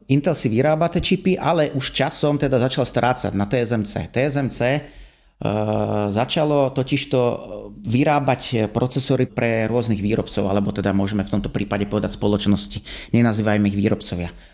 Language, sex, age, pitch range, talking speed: Slovak, male, 30-49, 110-140 Hz, 135 wpm